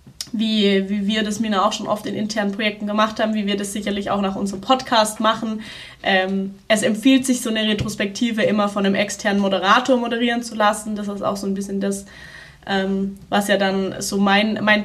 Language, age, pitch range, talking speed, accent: German, 20-39, 200-225 Hz, 205 wpm, German